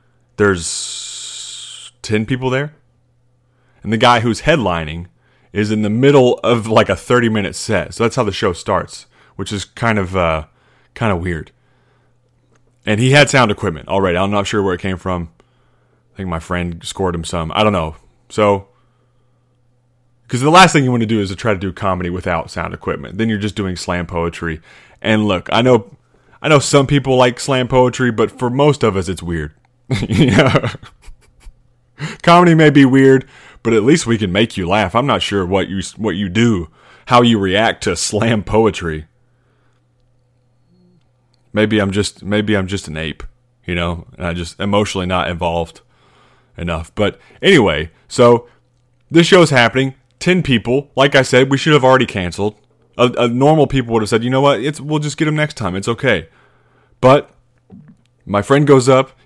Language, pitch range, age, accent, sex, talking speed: English, 95-125 Hz, 30-49, American, male, 185 wpm